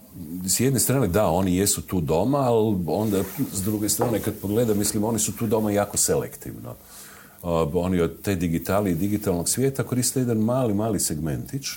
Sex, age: male, 50-69